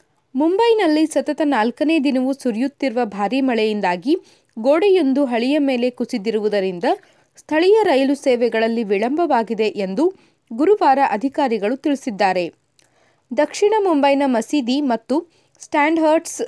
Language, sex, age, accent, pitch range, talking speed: Kannada, female, 20-39, native, 225-310 Hz, 85 wpm